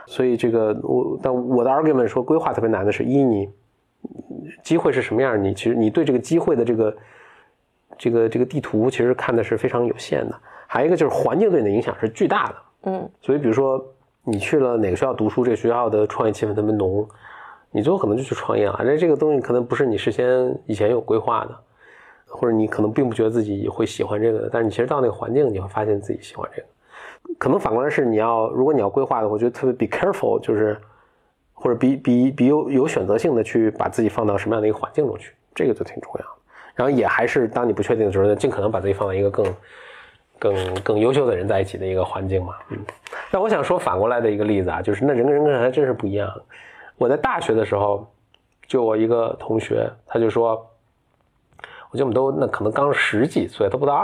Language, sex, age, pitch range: Chinese, male, 20-39, 105-125 Hz